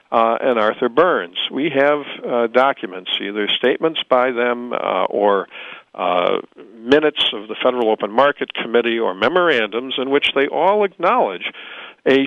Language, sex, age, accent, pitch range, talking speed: English, male, 50-69, American, 115-155 Hz, 145 wpm